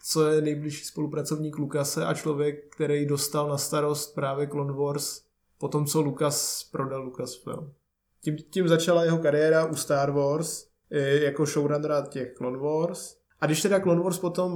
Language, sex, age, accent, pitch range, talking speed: Czech, male, 20-39, native, 135-155 Hz, 160 wpm